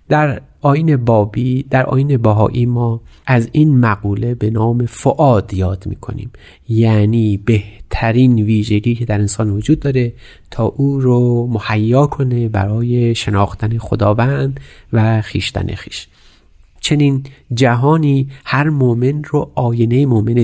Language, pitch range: Persian, 105-135 Hz